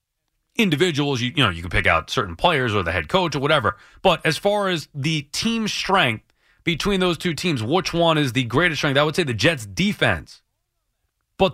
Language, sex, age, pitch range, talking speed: English, male, 30-49, 145-225 Hz, 210 wpm